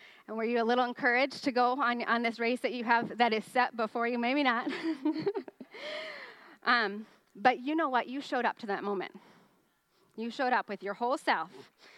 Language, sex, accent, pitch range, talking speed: English, female, American, 195-250 Hz, 200 wpm